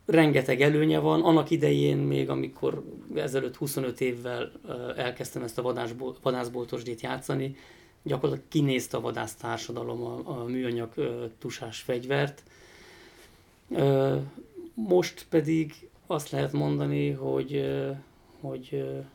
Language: Hungarian